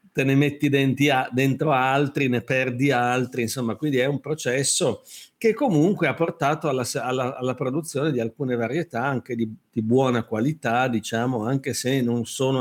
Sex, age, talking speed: male, 50-69, 160 wpm